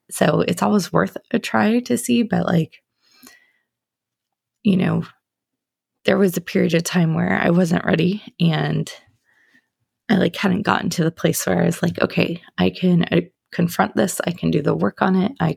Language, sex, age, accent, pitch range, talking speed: English, female, 20-39, American, 165-195 Hz, 180 wpm